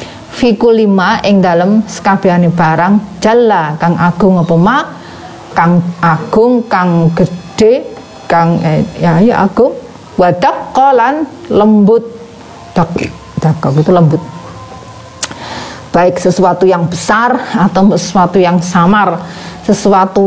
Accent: native